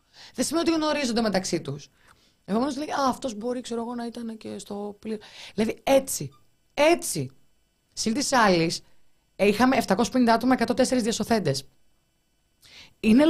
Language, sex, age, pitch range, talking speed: Greek, female, 20-39, 185-255 Hz, 130 wpm